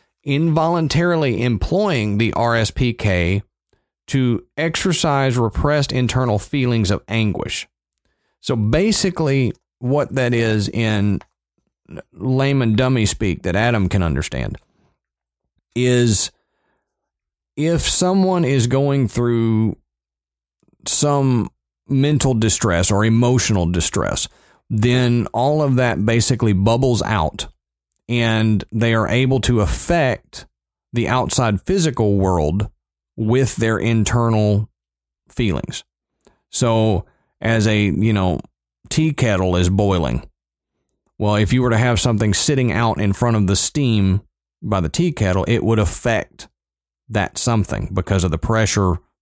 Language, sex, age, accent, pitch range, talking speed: English, male, 40-59, American, 95-125 Hz, 115 wpm